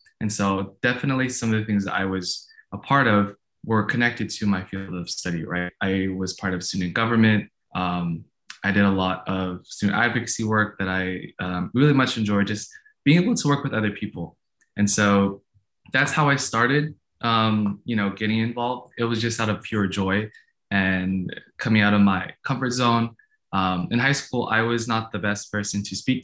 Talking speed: 200 wpm